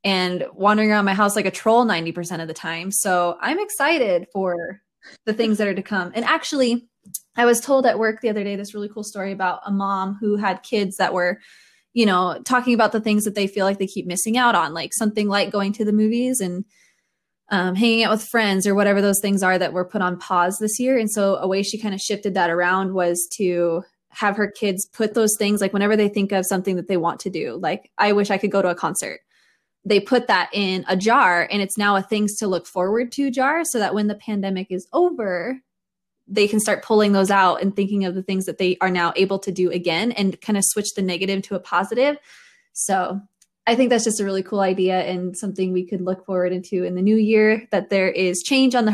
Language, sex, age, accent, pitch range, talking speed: English, female, 20-39, American, 185-220 Hz, 245 wpm